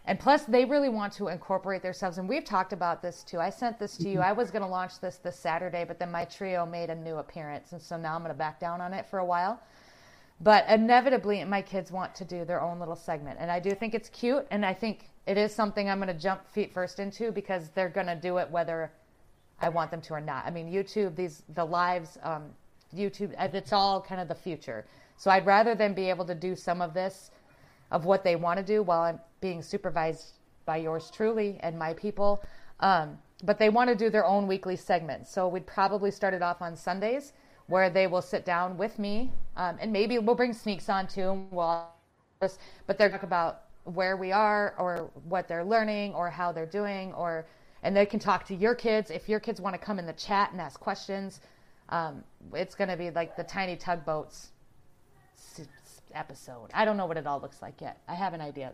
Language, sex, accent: English, female, American